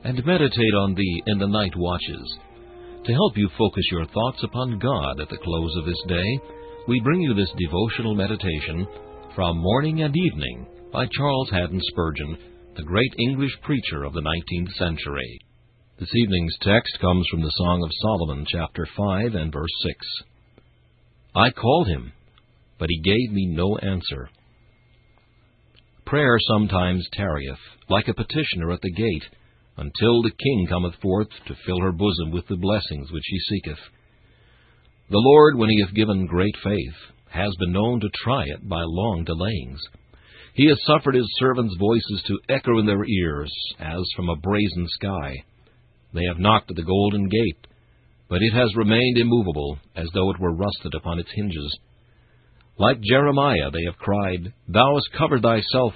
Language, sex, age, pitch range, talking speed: English, male, 60-79, 85-115 Hz, 165 wpm